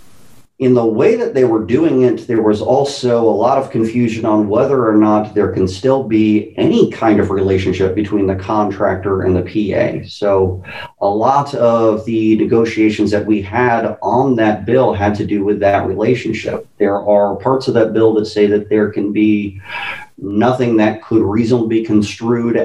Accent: American